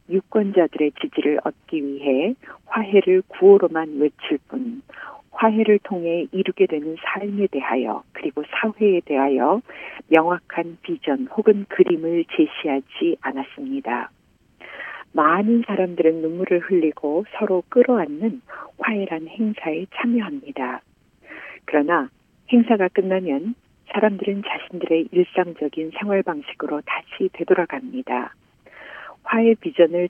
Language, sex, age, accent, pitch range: Korean, female, 50-69, native, 160-220 Hz